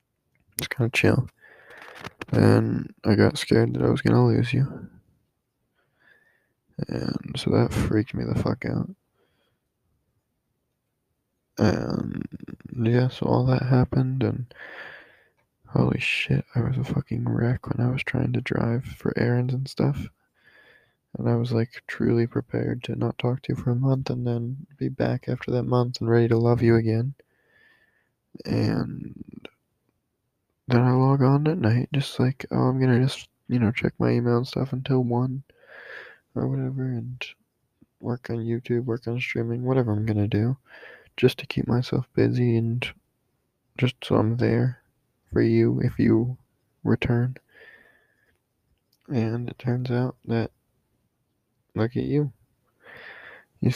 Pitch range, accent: 115-130 Hz, American